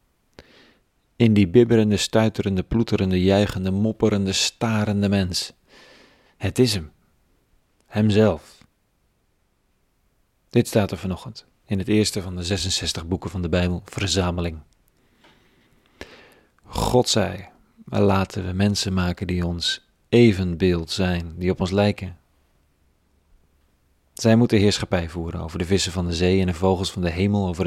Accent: Dutch